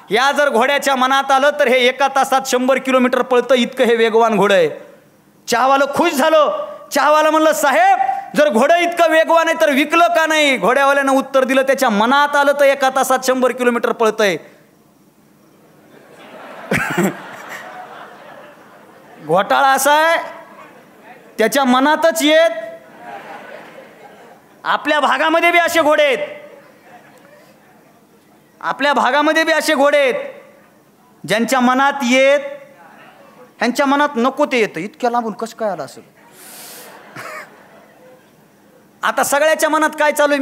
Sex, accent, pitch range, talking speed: male, native, 195-300 Hz, 115 wpm